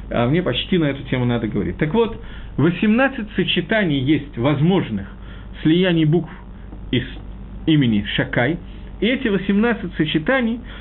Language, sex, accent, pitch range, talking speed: Russian, male, native, 125-185 Hz, 130 wpm